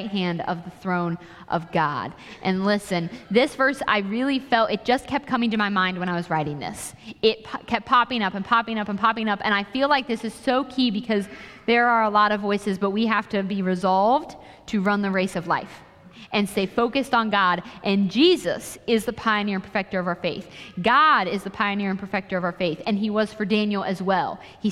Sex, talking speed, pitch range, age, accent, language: female, 230 wpm, 190-235 Hz, 20-39, American, English